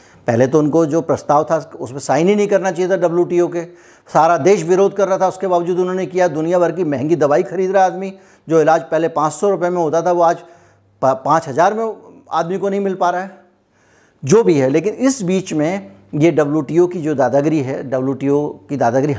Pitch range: 135-175 Hz